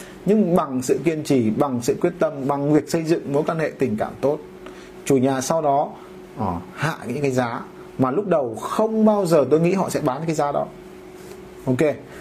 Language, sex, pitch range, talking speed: Vietnamese, male, 135-185 Hz, 210 wpm